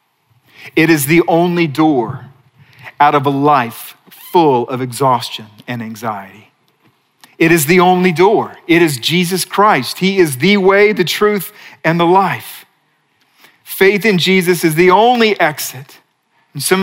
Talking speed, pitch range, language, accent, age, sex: 145 wpm, 140-195 Hz, English, American, 40-59, male